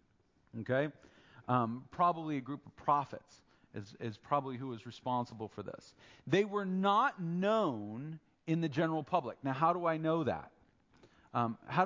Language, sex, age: English, male, 40-59